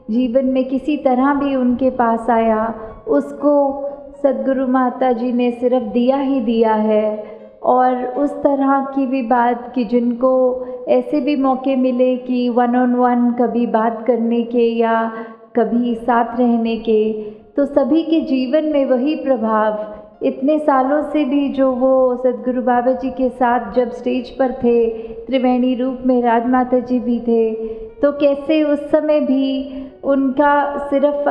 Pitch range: 245-275 Hz